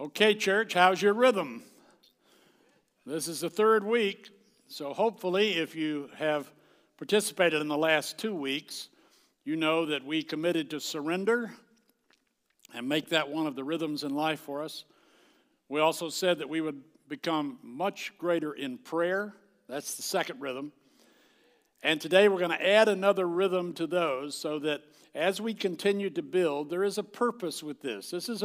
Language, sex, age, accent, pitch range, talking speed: English, male, 60-79, American, 155-205 Hz, 165 wpm